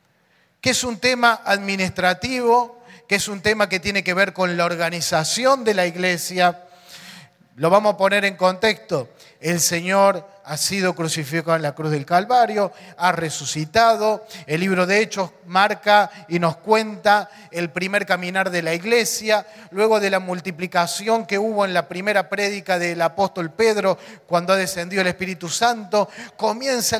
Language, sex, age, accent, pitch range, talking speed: English, male, 30-49, Argentinian, 175-220 Hz, 160 wpm